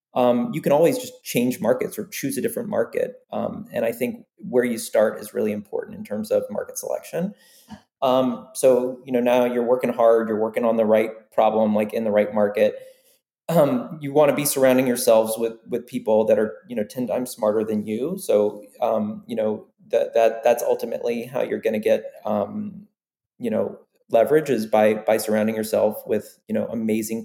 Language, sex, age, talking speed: English, male, 30-49, 200 wpm